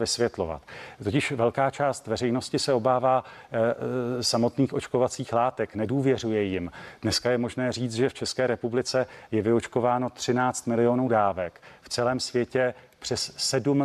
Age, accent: 40-59, native